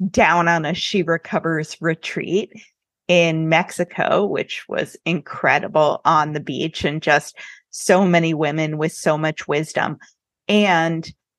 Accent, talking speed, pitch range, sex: American, 125 wpm, 160-190 Hz, female